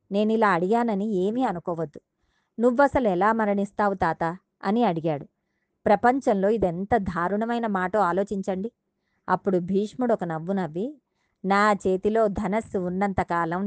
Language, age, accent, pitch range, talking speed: Telugu, 20-39, native, 180-235 Hz, 100 wpm